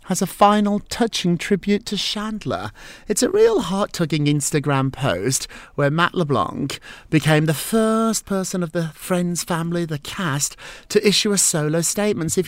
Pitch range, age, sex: 130-180 Hz, 30-49, male